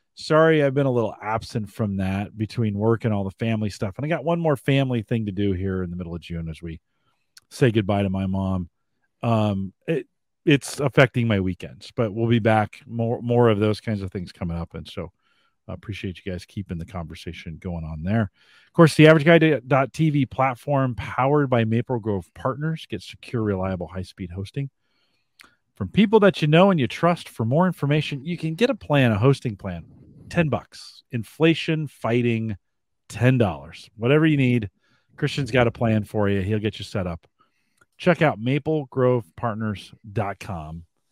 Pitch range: 95-135 Hz